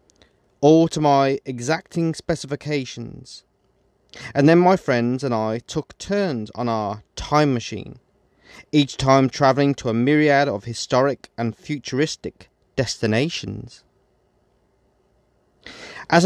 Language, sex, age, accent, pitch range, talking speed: English, male, 30-49, British, 115-140 Hz, 105 wpm